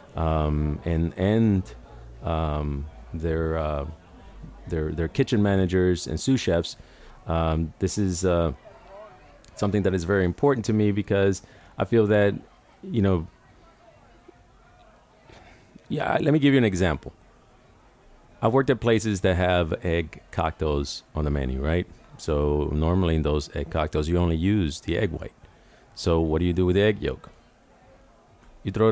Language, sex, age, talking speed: English, male, 30-49, 150 wpm